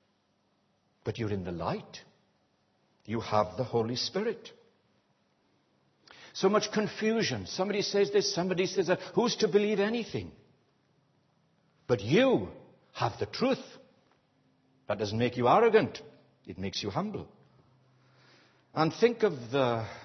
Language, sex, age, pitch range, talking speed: English, male, 60-79, 125-200 Hz, 125 wpm